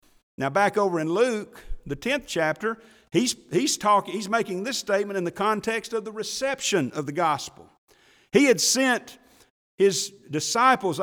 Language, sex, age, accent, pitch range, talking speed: English, male, 50-69, American, 155-230 Hz, 160 wpm